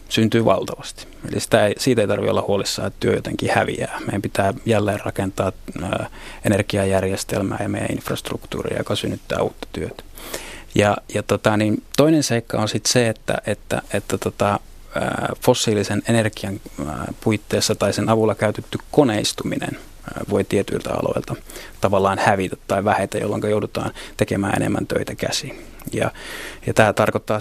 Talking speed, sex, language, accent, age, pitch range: 140 wpm, male, Finnish, native, 30-49, 100-115 Hz